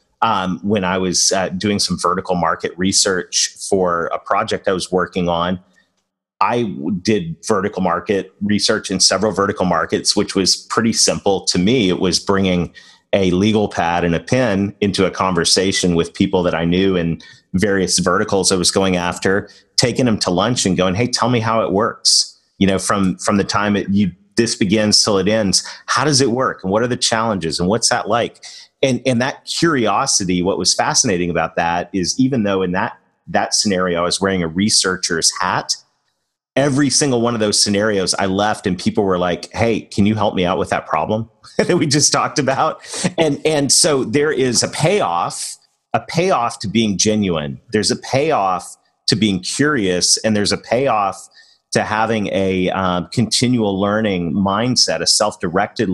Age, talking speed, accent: 30-49, 185 wpm, American